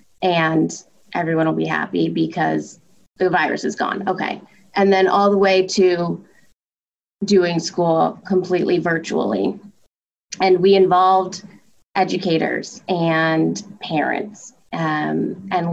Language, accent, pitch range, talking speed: English, American, 160-195 Hz, 110 wpm